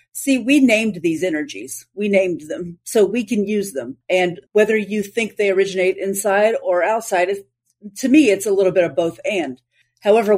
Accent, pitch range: American, 180-210 Hz